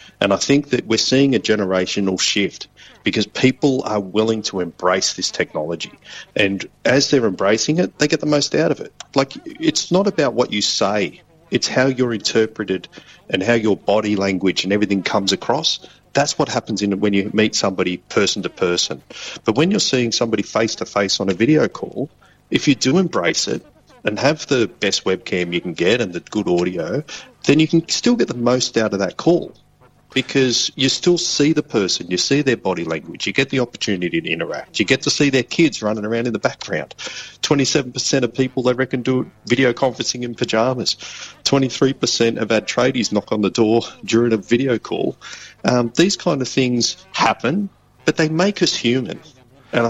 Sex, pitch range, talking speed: male, 105-140 Hz, 190 wpm